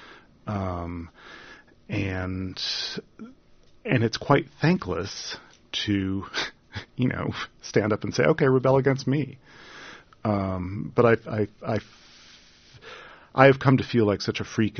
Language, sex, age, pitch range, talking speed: English, male, 40-59, 85-105 Hz, 125 wpm